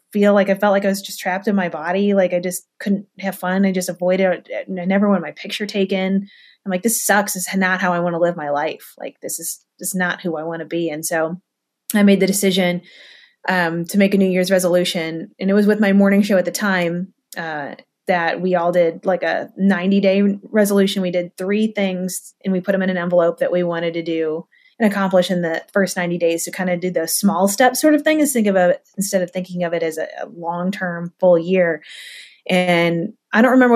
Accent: American